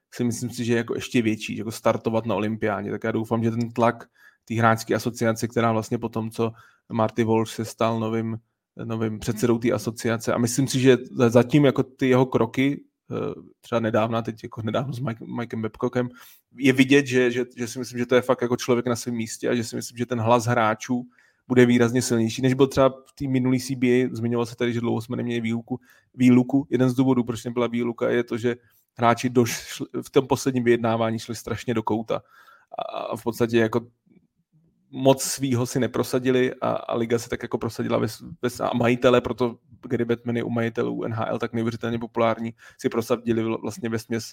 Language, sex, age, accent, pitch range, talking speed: Czech, male, 20-39, native, 115-125 Hz, 200 wpm